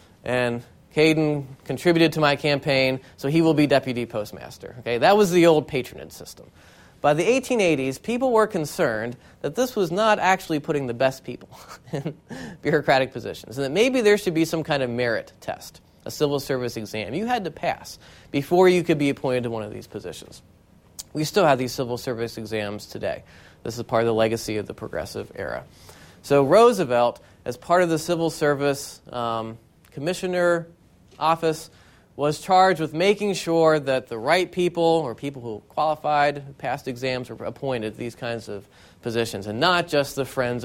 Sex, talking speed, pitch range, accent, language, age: male, 180 wpm, 120-165 Hz, American, English, 30-49